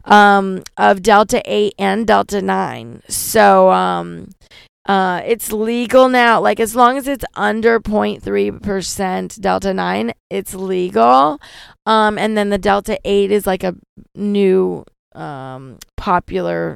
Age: 20-39